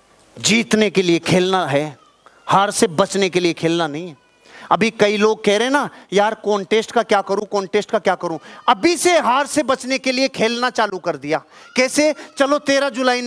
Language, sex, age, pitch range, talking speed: Hindi, male, 40-59, 200-260 Hz, 195 wpm